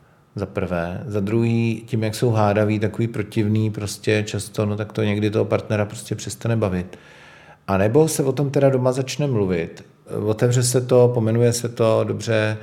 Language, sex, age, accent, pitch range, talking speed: Czech, male, 40-59, native, 100-115 Hz, 175 wpm